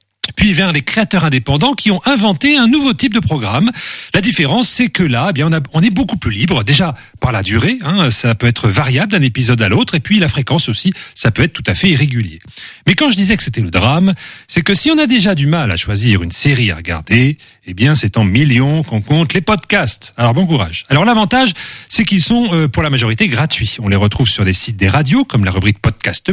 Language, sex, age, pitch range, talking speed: French, male, 40-59, 115-190 Hz, 245 wpm